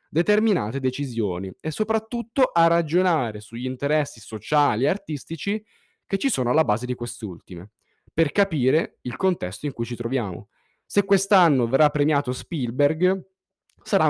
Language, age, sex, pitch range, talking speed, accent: Italian, 10-29, male, 125-180 Hz, 135 wpm, native